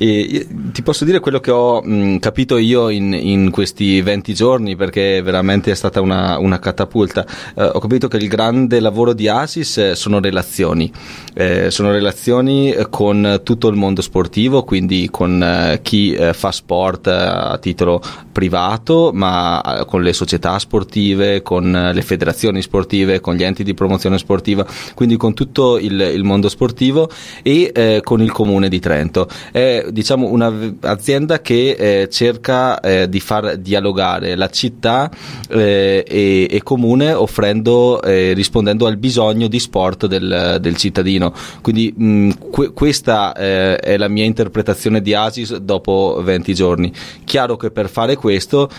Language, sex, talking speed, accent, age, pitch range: Italian, male, 160 wpm, native, 20-39, 95-115 Hz